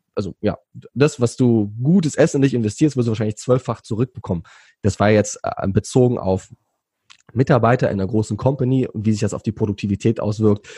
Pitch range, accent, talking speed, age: 110-130 Hz, German, 185 wpm, 20-39